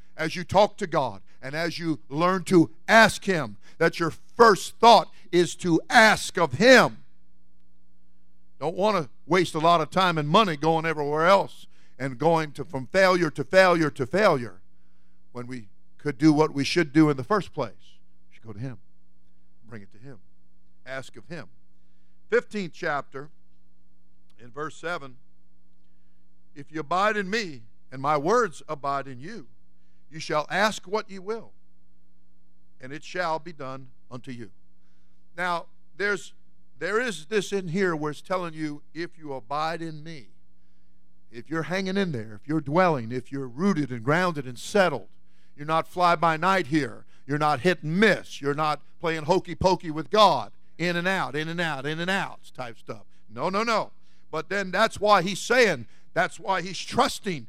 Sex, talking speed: male, 175 wpm